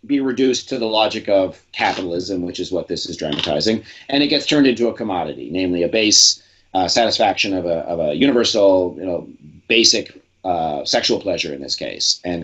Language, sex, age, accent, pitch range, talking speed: English, male, 40-59, American, 100-150 Hz, 195 wpm